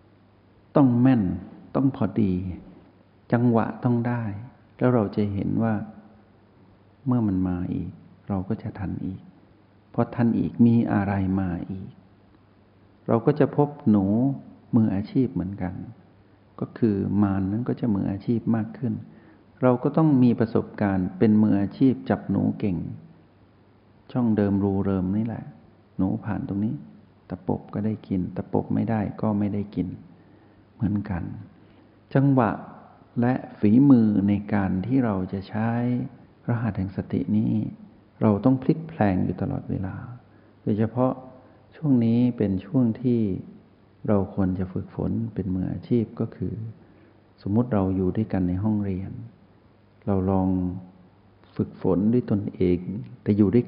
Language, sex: Thai, male